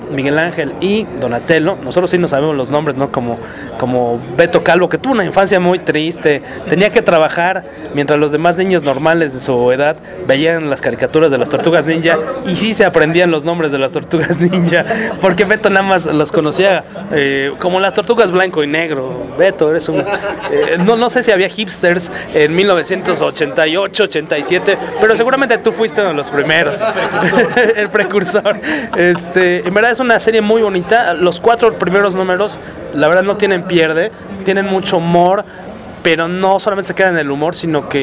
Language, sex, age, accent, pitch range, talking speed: English, male, 30-49, Mexican, 150-195 Hz, 185 wpm